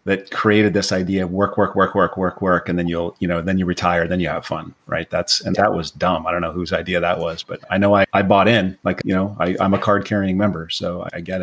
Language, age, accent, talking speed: English, 30-49, American, 290 wpm